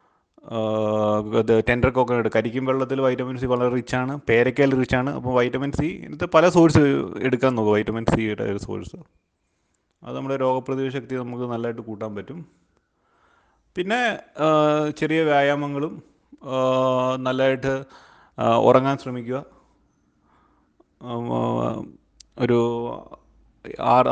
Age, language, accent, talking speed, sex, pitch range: 30-49, Malayalam, native, 95 wpm, male, 115-145 Hz